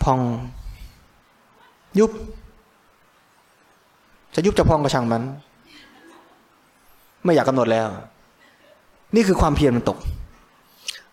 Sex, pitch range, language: male, 140-195 Hz, Thai